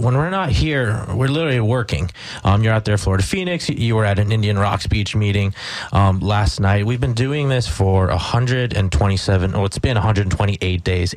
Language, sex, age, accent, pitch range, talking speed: English, male, 20-39, American, 100-125 Hz, 200 wpm